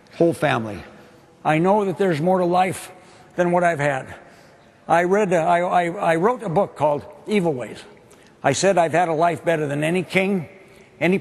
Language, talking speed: English, 185 wpm